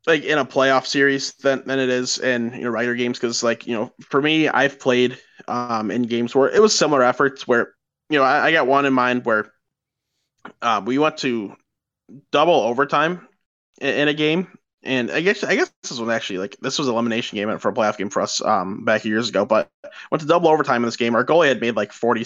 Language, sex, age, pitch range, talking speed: English, male, 20-39, 115-135 Hz, 235 wpm